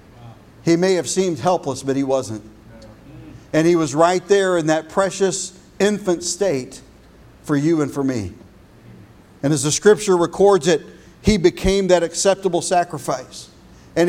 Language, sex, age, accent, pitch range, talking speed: English, male, 50-69, American, 140-175 Hz, 150 wpm